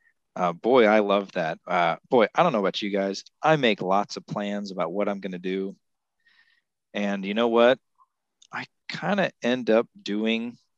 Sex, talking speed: male, 190 wpm